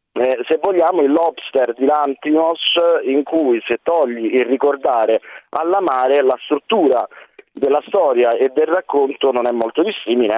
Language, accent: Italian, native